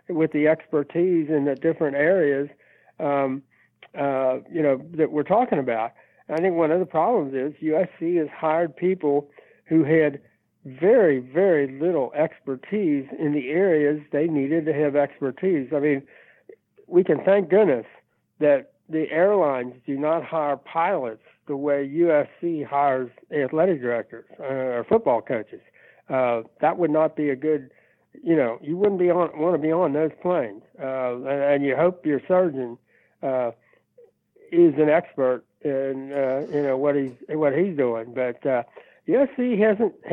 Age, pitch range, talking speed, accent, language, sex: 60-79, 135-165 Hz, 160 wpm, American, English, male